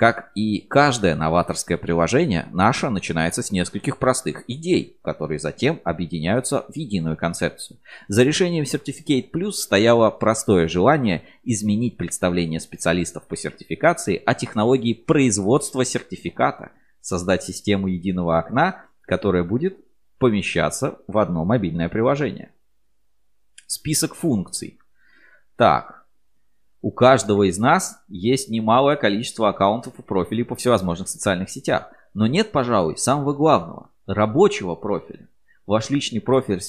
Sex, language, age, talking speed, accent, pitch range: male, Russian, 30-49, 115 wpm, native, 95-130 Hz